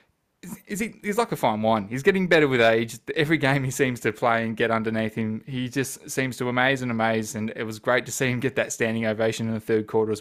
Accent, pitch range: Australian, 110-135 Hz